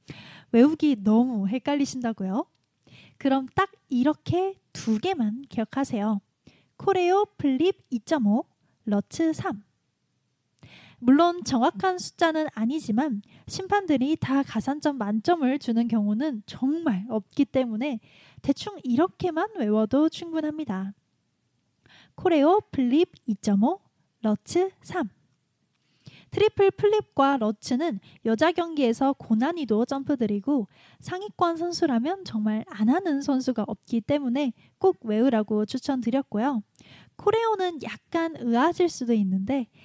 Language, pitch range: Korean, 225-325 Hz